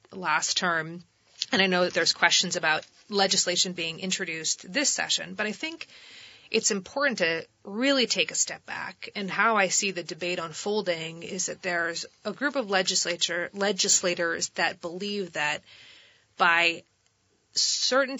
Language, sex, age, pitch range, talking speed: English, female, 30-49, 175-210 Hz, 145 wpm